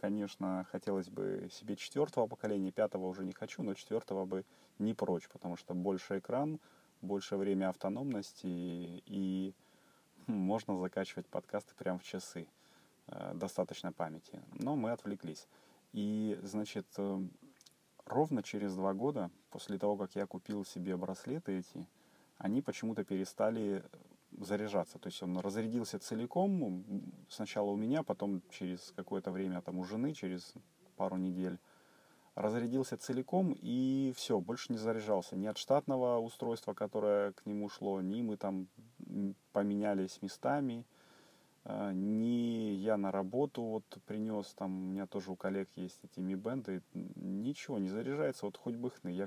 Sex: male